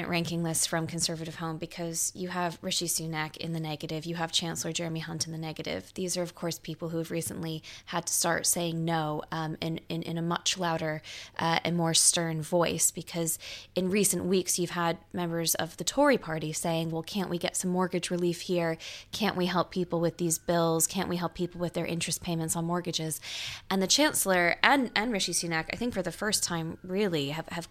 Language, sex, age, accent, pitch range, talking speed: English, female, 20-39, American, 165-180 Hz, 215 wpm